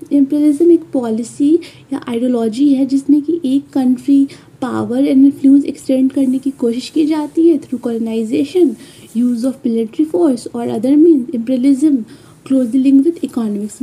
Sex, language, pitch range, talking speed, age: female, Hindi, 245-295 Hz, 150 wpm, 20-39